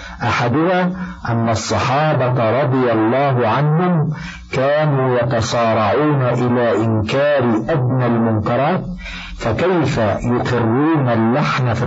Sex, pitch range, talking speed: male, 115-150 Hz, 80 wpm